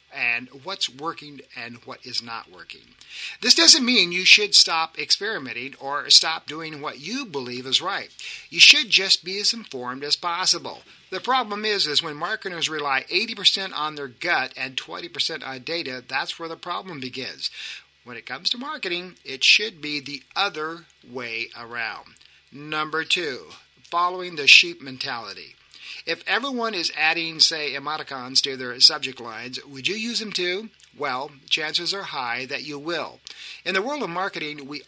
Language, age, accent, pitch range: English, 50-69, American, 135-180 Hz